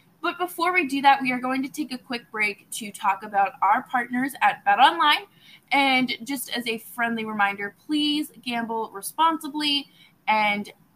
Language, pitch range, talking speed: English, 195-275 Hz, 170 wpm